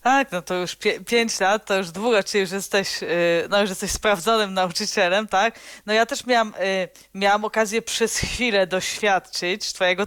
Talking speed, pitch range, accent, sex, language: 165 wpm, 185-235 Hz, native, female, Polish